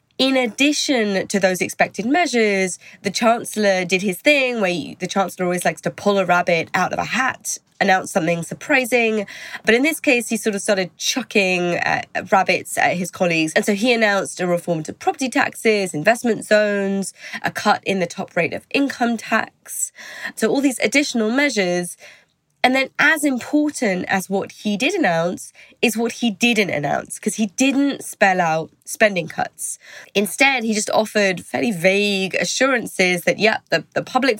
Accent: British